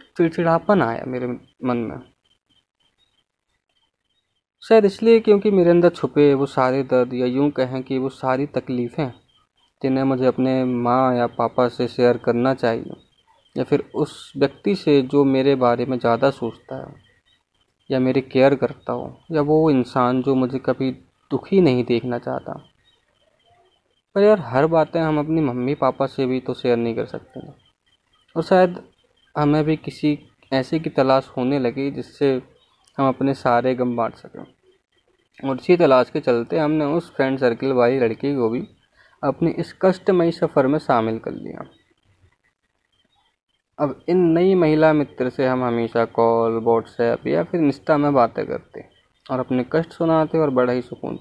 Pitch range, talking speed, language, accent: 125-150 Hz, 160 wpm, Hindi, native